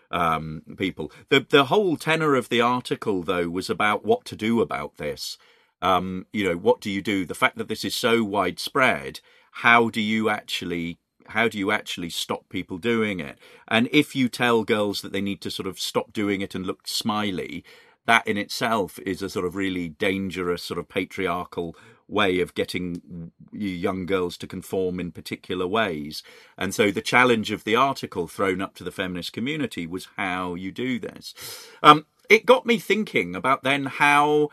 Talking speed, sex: 190 wpm, male